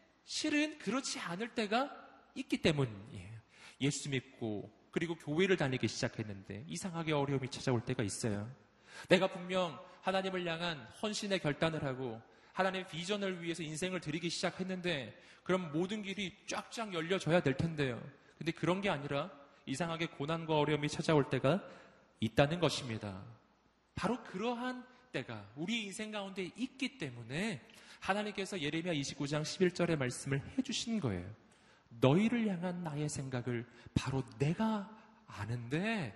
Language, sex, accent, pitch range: Korean, male, native, 130-200 Hz